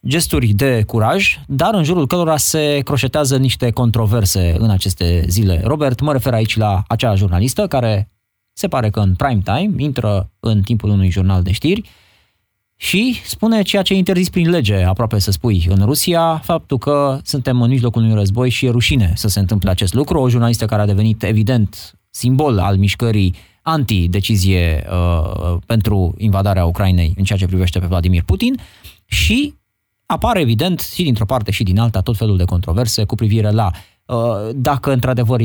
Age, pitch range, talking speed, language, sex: 20-39, 100-130 Hz, 170 wpm, Romanian, male